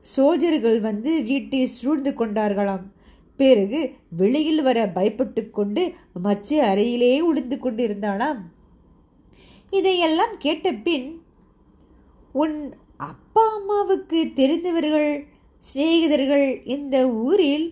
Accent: native